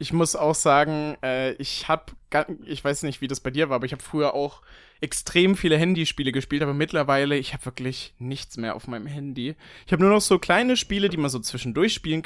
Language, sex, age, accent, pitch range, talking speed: German, male, 20-39, German, 140-180 Hz, 220 wpm